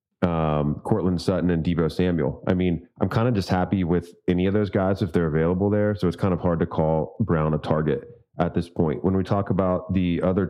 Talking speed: 235 wpm